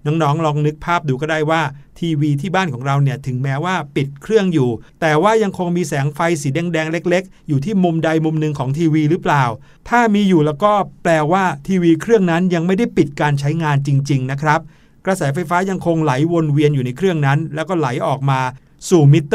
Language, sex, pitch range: Thai, male, 145-185 Hz